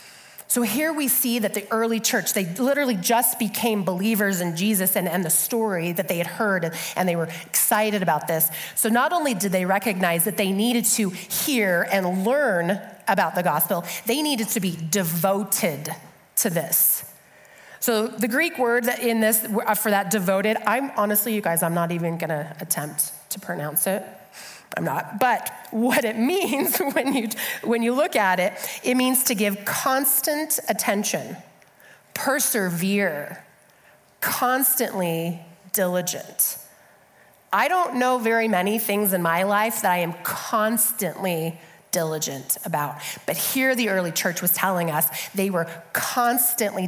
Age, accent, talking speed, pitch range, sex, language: 30-49, American, 155 wpm, 175-230 Hz, female, English